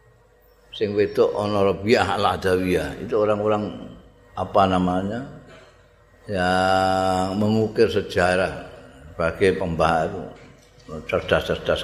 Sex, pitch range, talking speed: male, 90-130 Hz, 60 wpm